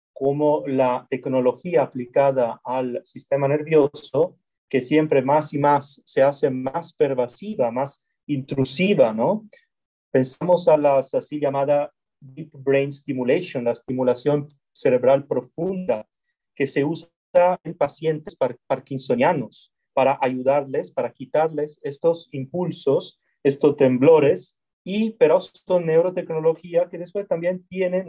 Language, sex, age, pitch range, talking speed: Spanish, male, 30-49, 135-170 Hz, 115 wpm